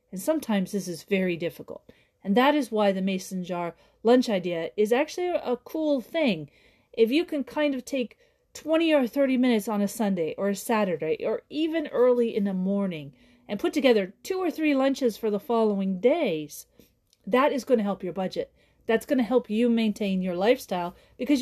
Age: 40-59